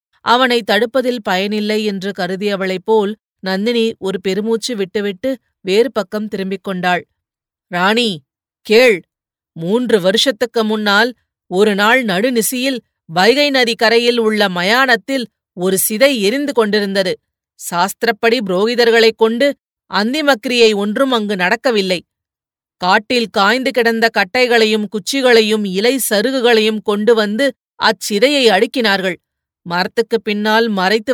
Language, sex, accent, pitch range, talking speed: Tamil, female, native, 195-235 Hz, 95 wpm